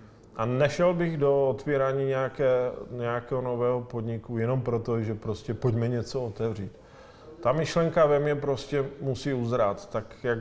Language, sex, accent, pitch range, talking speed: Czech, male, native, 115-130 Hz, 145 wpm